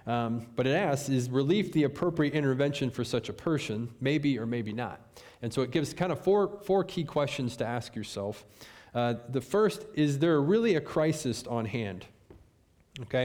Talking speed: 185 wpm